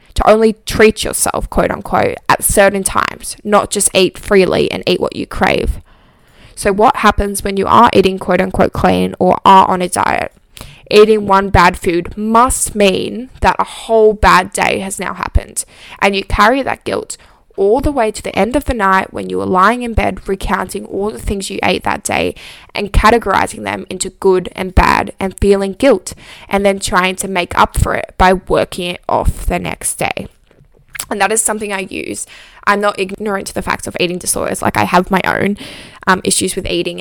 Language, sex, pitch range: English, female, 185-215 Hz